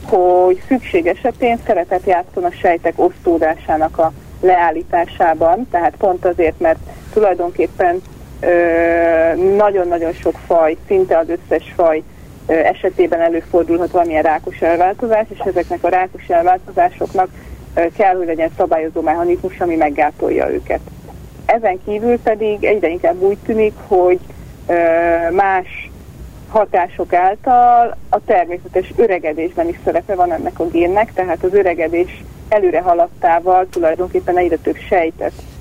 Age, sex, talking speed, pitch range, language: 30-49, female, 120 wpm, 165-210 Hz, Hungarian